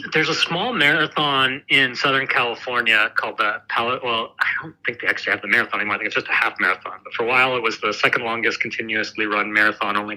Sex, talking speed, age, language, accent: male, 235 wpm, 40-59, English, American